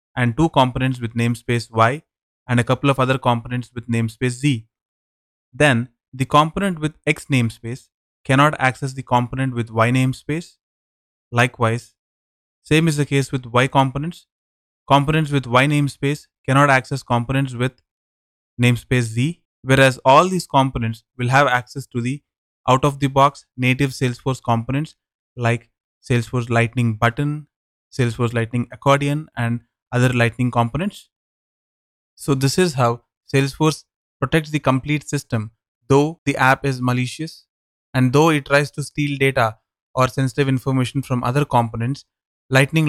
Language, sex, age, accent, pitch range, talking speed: English, male, 20-39, Indian, 120-140 Hz, 140 wpm